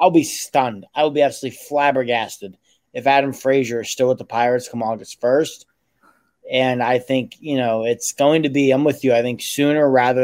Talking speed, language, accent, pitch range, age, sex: 205 wpm, English, American, 120-140 Hz, 20-39, male